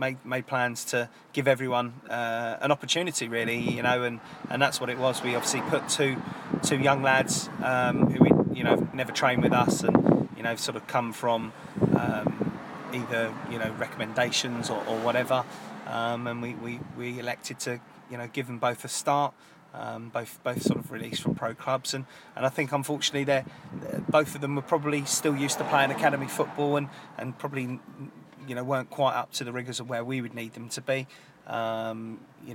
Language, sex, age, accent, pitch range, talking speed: English, male, 30-49, British, 115-140 Hz, 205 wpm